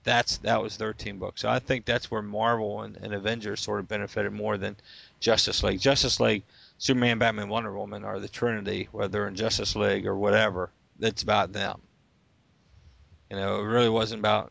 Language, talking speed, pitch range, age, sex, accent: English, 190 wpm, 100-115 Hz, 40-59, male, American